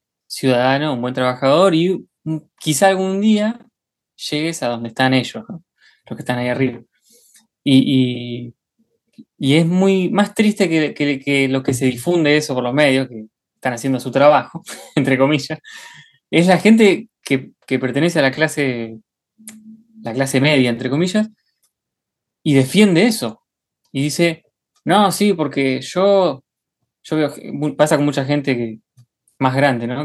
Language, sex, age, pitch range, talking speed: Spanish, male, 20-39, 130-170 Hz, 150 wpm